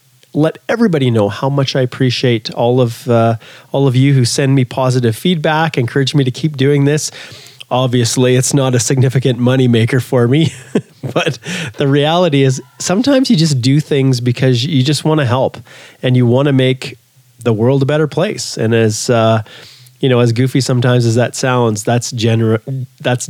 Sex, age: male, 30-49